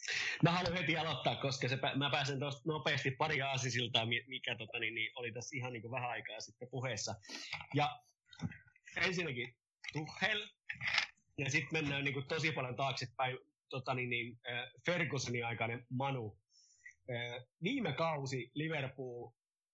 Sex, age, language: male, 30-49, Finnish